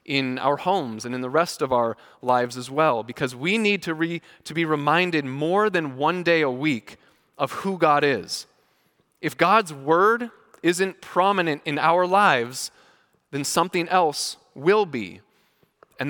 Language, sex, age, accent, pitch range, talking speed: English, male, 20-39, American, 130-175 Hz, 160 wpm